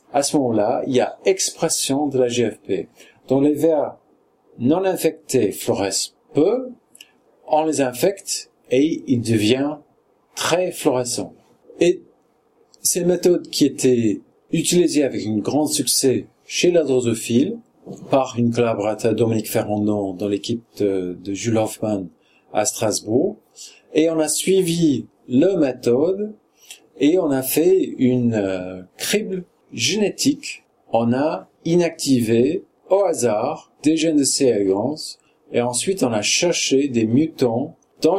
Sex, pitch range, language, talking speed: male, 115-165 Hz, French, 130 wpm